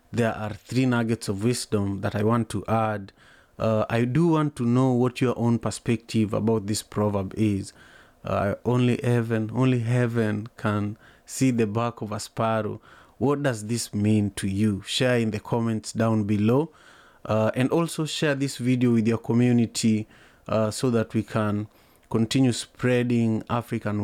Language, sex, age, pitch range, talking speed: English, male, 30-49, 110-125 Hz, 165 wpm